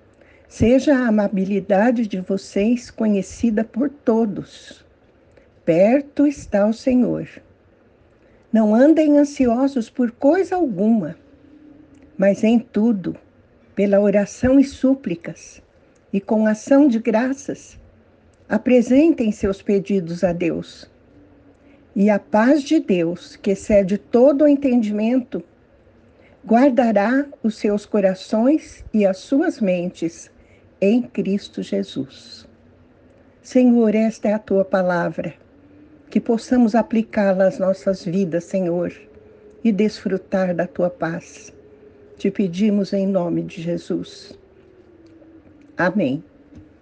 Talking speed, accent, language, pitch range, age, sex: 105 wpm, Brazilian, Portuguese, 190-250 Hz, 60-79, female